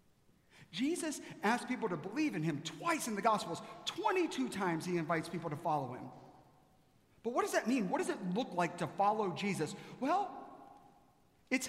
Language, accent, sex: English, American, male